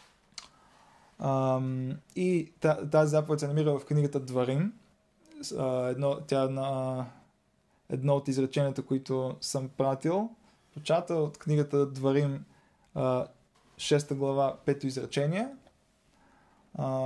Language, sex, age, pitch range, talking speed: Bulgarian, male, 20-39, 135-155 Hz, 105 wpm